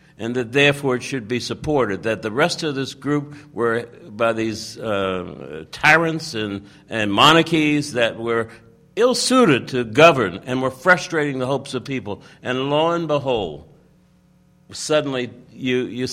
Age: 60-79